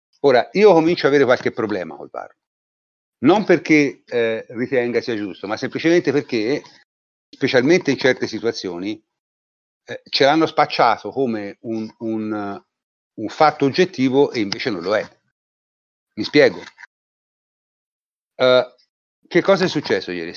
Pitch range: 105-145 Hz